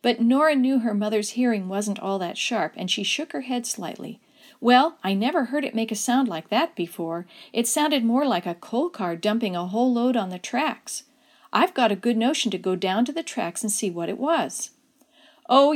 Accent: American